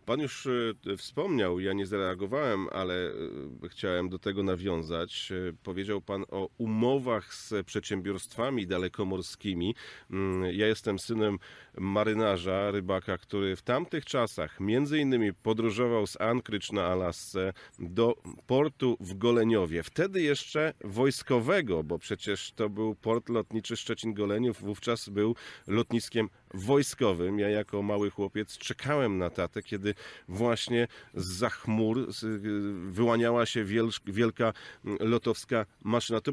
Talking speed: 115 wpm